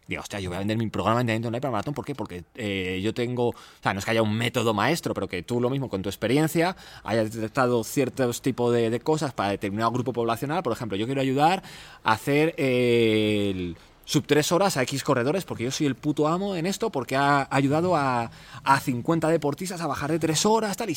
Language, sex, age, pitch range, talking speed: Spanish, male, 20-39, 110-155 Hz, 240 wpm